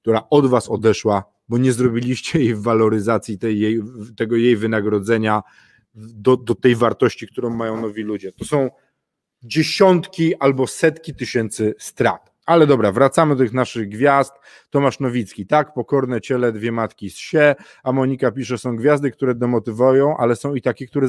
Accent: native